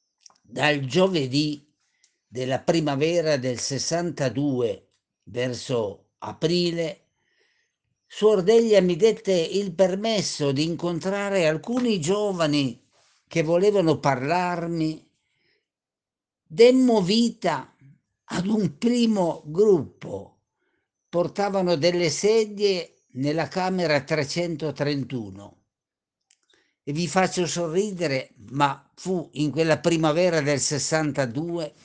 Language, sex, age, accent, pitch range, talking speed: Italian, male, 50-69, native, 145-195 Hz, 80 wpm